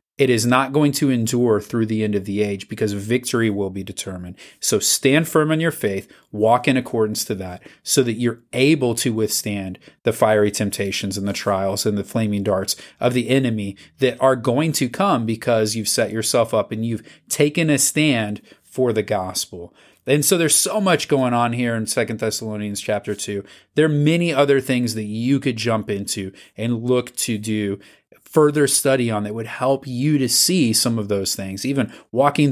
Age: 30-49